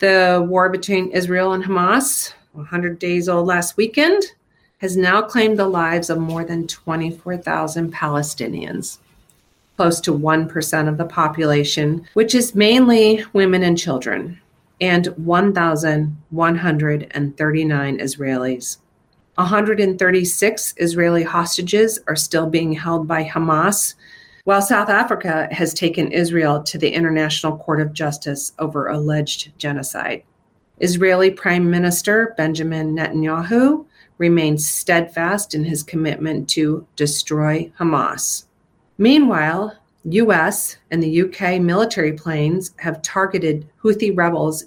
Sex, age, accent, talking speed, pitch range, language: female, 40-59, American, 115 wpm, 155-185 Hz, English